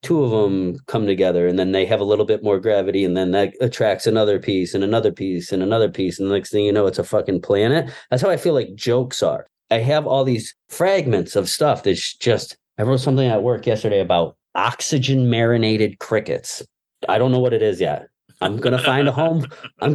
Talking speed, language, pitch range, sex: 230 wpm, English, 110-140 Hz, male